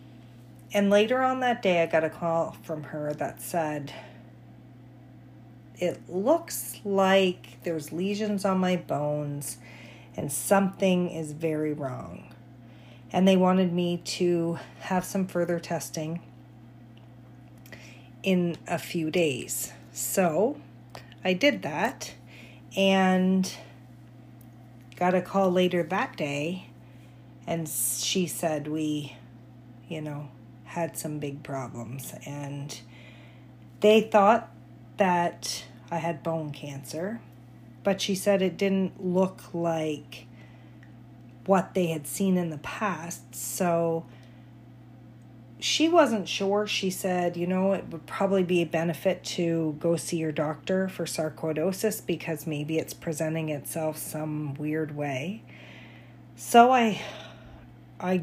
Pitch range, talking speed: 125-185 Hz, 115 wpm